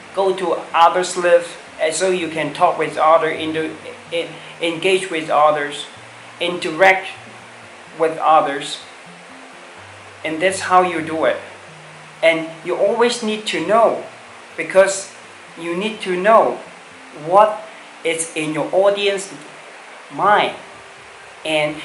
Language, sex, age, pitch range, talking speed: English, male, 40-59, 155-185 Hz, 110 wpm